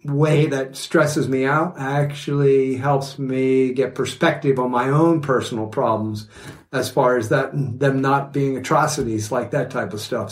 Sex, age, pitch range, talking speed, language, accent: male, 50-69, 130-155 Hz, 165 wpm, English, American